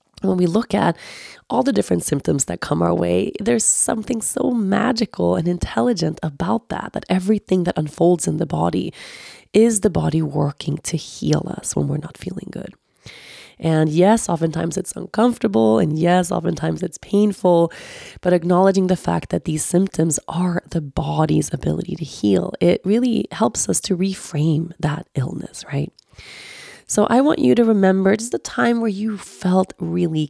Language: English